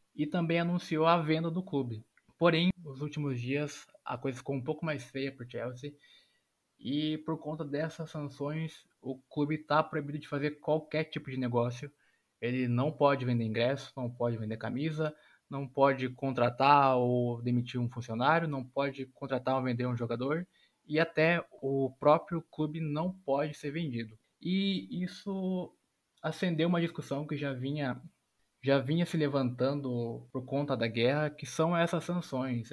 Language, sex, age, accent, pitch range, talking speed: Portuguese, male, 20-39, Brazilian, 125-155 Hz, 160 wpm